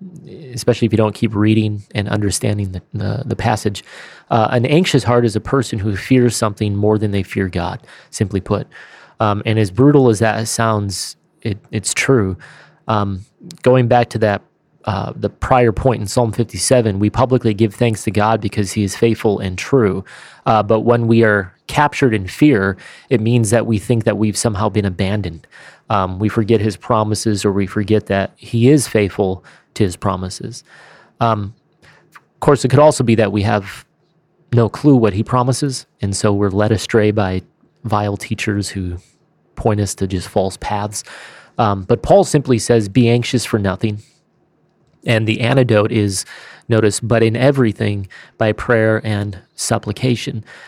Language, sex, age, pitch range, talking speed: English, male, 30-49, 105-120 Hz, 170 wpm